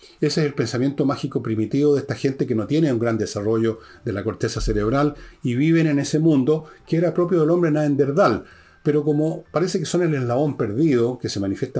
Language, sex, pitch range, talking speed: Spanish, male, 110-150 Hz, 210 wpm